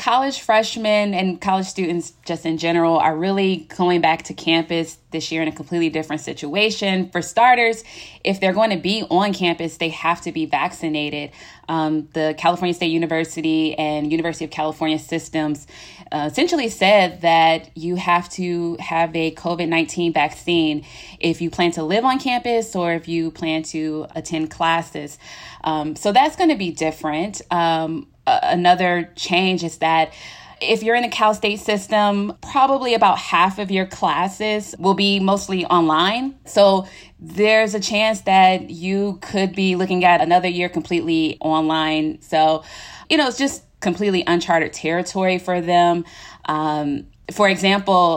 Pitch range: 160-195 Hz